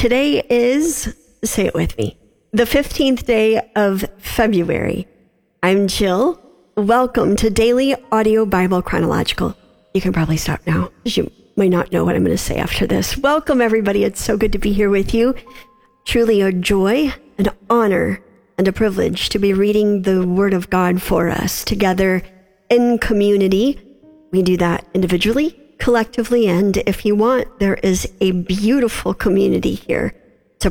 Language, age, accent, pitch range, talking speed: English, 50-69, American, 190-235 Hz, 160 wpm